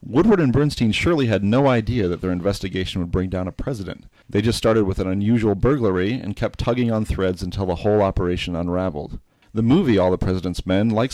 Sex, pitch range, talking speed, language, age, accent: male, 95-120 Hz, 210 wpm, English, 40-59, American